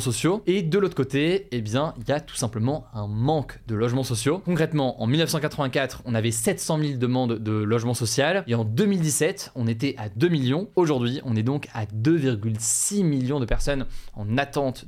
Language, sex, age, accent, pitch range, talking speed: French, male, 20-39, French, 115-145 Hz, 195 wpm